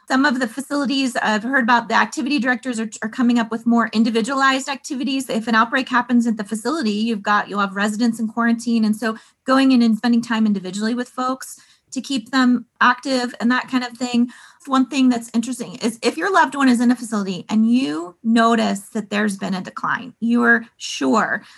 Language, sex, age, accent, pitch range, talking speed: English, female, 30-49, American, 205-240 Hz, 210 wpm